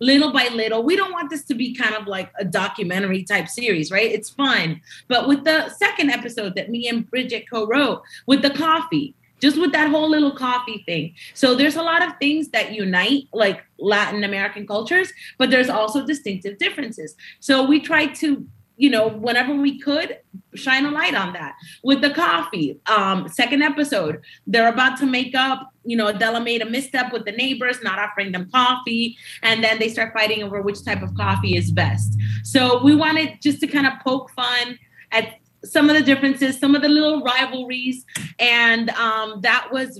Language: English